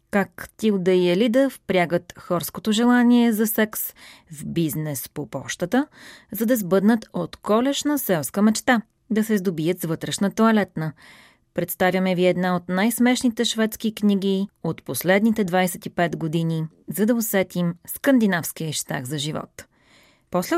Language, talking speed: Bulgarian, 130 wpm